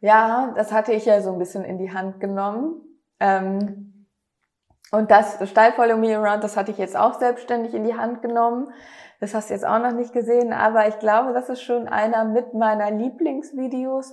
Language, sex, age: German, female, 20-39